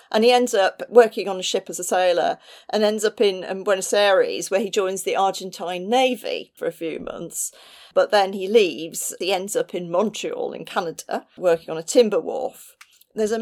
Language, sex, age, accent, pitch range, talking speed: English, female, 40-59, British, 190-280 Hz, 200 wpm